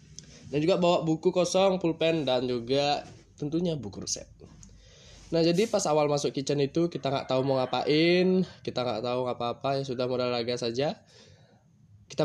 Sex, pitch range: male, 120-165 Hz